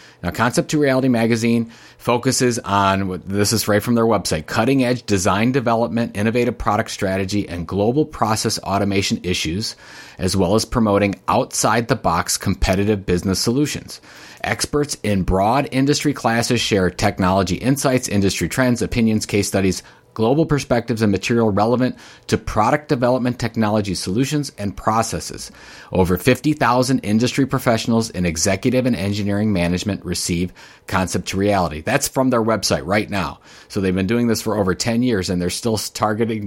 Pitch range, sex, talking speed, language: 95-120 Hz, male, 145 wpm, English